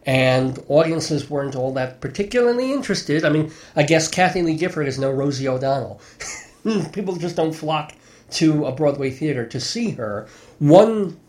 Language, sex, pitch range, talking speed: English, male, 125-160 Hz, 160 wpm